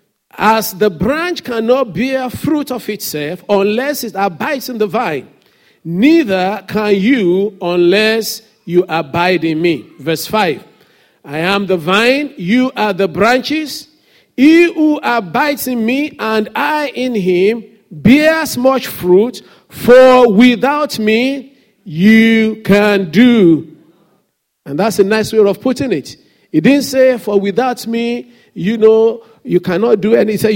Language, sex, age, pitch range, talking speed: English, male, 50-69, 200-265 Hz, 135 wpm